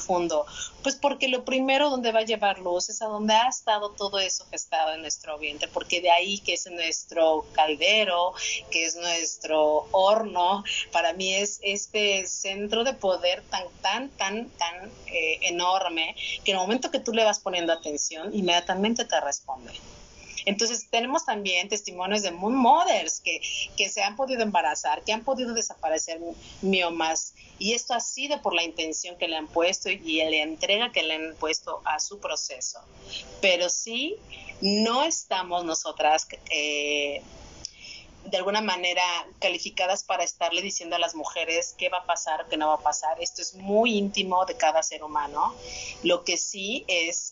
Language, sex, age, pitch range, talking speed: Spanish, female, 40-59, 165-210 Hz, 170 wpm